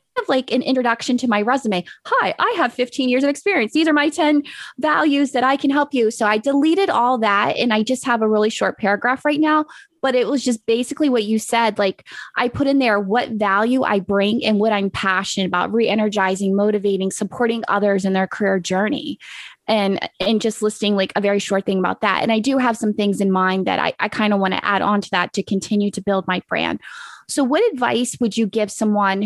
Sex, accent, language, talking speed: female, American, English, 230 wpm